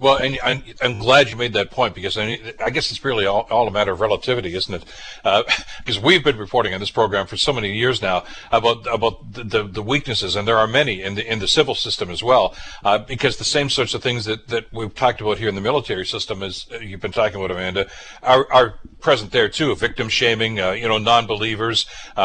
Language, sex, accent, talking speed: English, male, American, 225 wpm